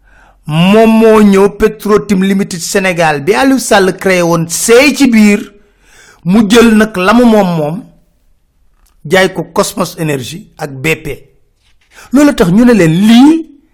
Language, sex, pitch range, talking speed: French, male, 165-230 Hz, 85 wpm